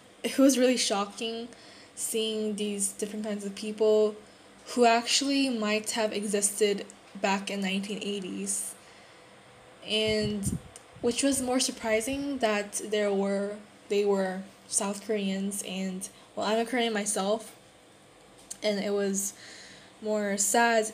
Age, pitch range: 10-29, 200-230 Hz